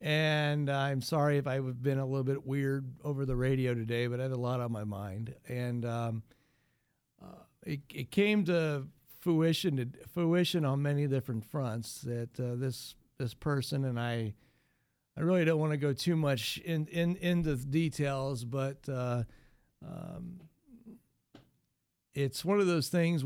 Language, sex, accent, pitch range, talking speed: English, male, American, 125-155 Hz, 170 wpm